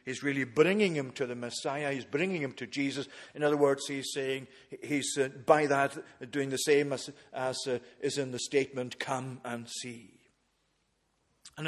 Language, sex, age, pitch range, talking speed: English, male, 50-69, 135-165 Hz, 180 wpm